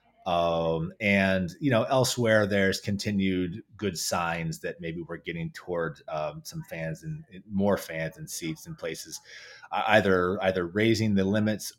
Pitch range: 85-110 Hz